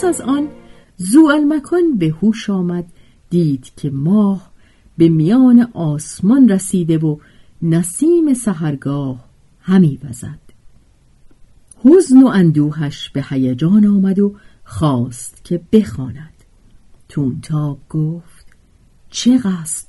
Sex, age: female, 50-69